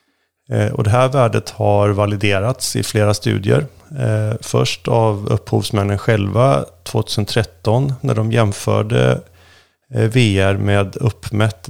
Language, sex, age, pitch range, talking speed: Swedish, male, 30-49, 95-115 Hz, 105 wpm